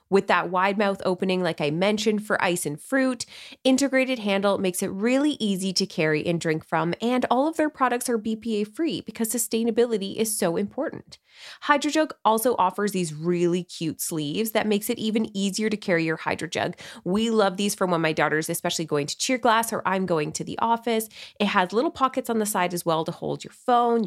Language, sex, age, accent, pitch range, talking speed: English, female, 20-39, American, 175-230 Hz, 205 wpm